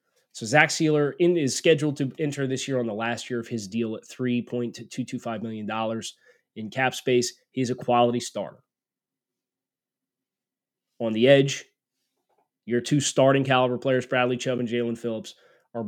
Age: 20-39